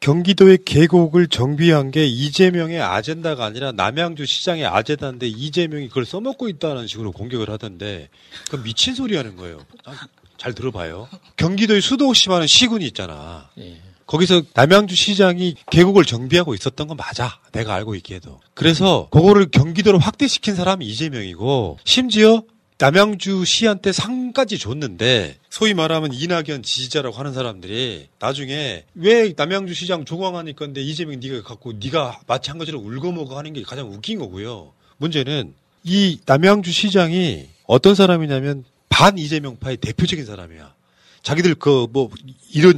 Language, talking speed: English, 125 wpm